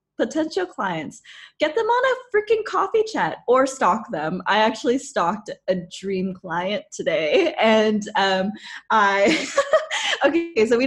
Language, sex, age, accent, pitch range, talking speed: English, female, 20-39, American, 205-280 Hz, 135 wpm